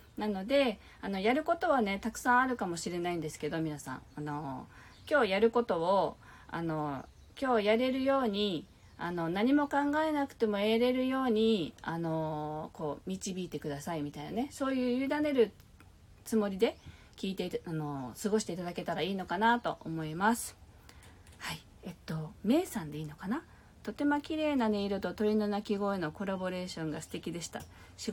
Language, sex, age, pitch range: Japanese, female, 40-59, 165-235 Hz